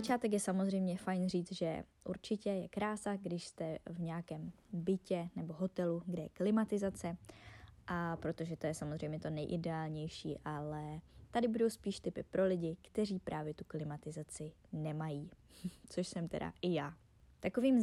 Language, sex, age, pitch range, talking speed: Czech, female, 20-39, 155-185 Hz, 150 wpm